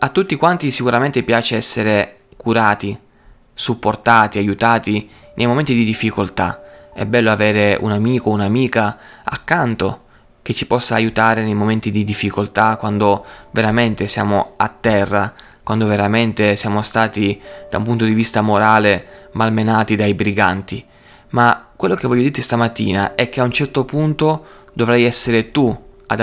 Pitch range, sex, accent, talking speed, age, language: 105-120 Hz, male, native, 145 wpm, 20-39, Italian